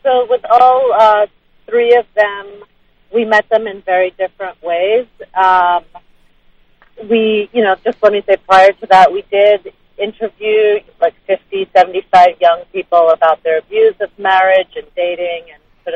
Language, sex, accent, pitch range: English, female, American, 170-220 Hz